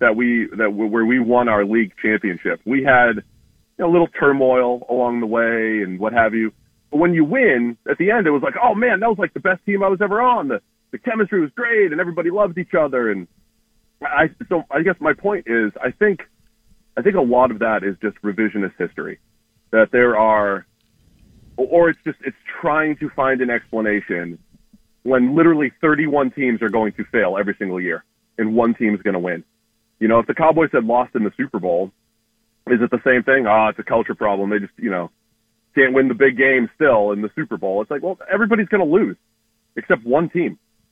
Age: 30-49